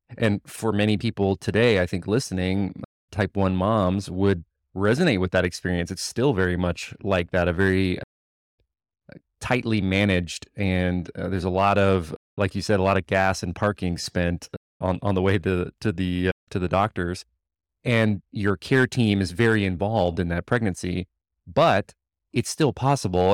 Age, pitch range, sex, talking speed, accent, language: 30-49, 90-105 Hz, male, 170 wpm, American, English